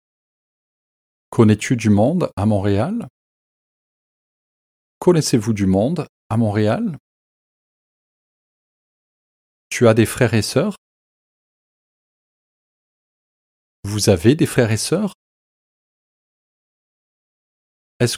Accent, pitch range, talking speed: French, 95-125 Hz, 75 wpm